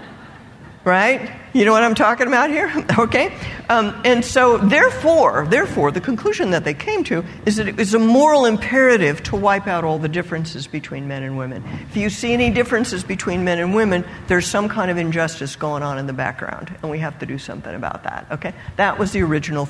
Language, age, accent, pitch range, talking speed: English, 50-69, American, 145-220 Hz, 205 wpm